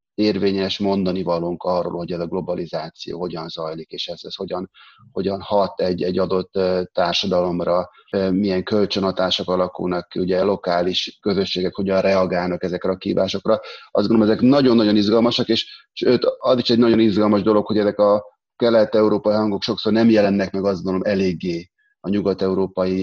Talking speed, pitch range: 150 wpm, 95-110 Hz